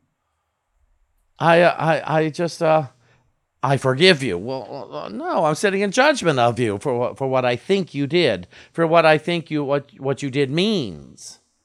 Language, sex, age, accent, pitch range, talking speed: English, male, 50-69, American, 95-160 Hz, 170 wpm